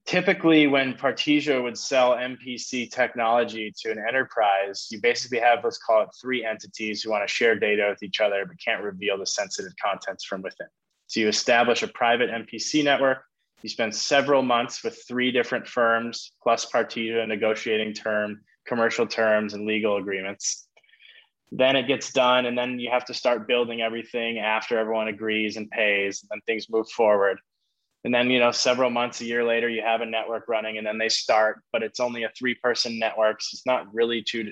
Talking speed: 190 wpm